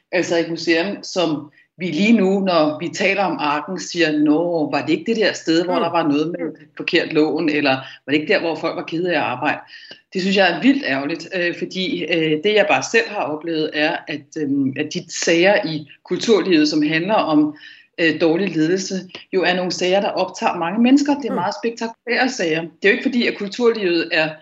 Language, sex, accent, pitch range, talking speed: Danish, female, native, 170-225 Hz, 205 wpm